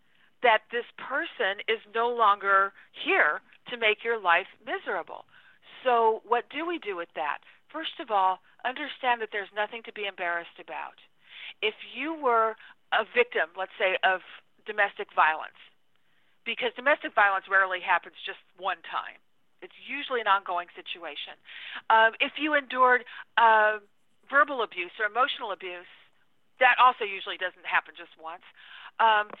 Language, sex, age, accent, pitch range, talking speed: English, female, 50-69, American, 195-250 Hz, 145 wpm